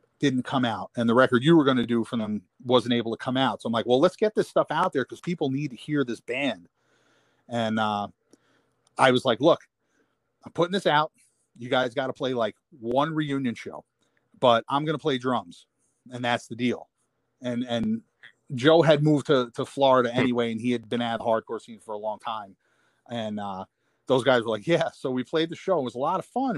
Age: 30-49